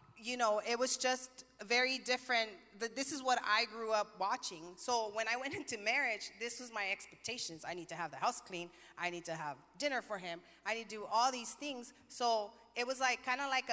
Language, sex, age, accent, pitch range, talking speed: English, female, 30-49, American, 205-250 Hz, 225 wpm